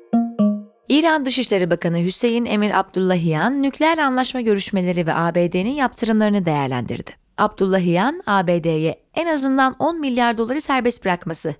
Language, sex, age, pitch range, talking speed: Turkish, female, 30-49, 180-250 Hz, 115 wpm